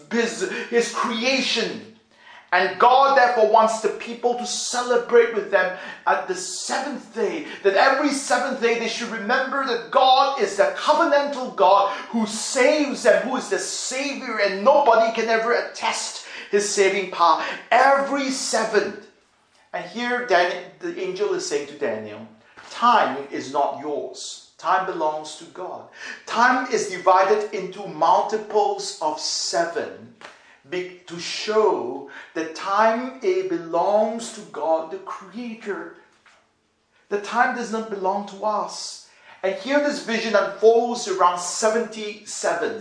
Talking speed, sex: 130 wpm, male